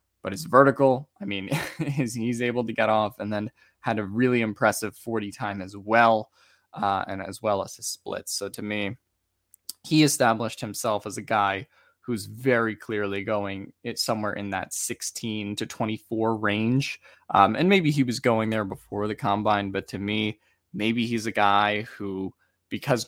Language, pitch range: English, 105-125 Hz